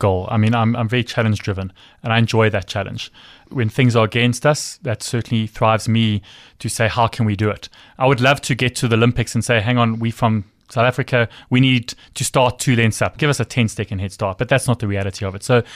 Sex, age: male, 20-39